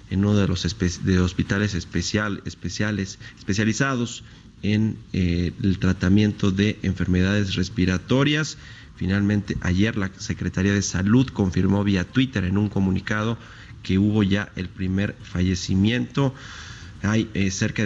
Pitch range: 95-110 Hz